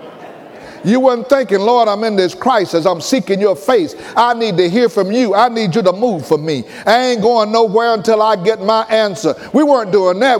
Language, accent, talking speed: English, American, 220 wpm